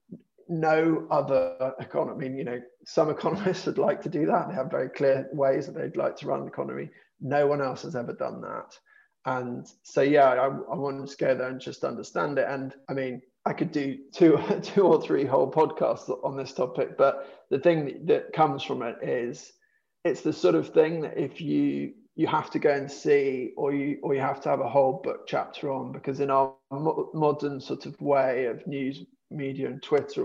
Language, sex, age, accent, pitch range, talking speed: English, male, 20-39, British, 135-175 Hz, 210 wpm